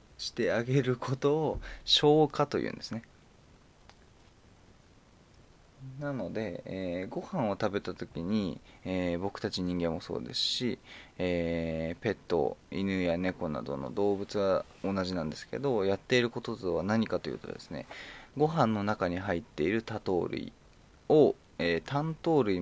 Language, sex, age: Japanese, male, 20-39